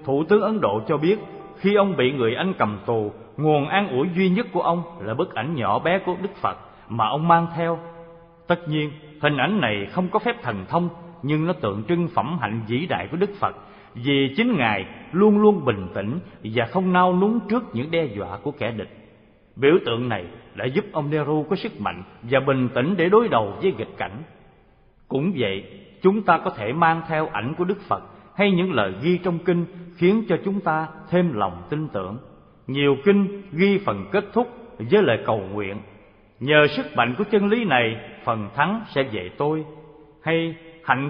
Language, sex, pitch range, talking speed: Vietnamese, male, 125-190 Hz, 205 wpm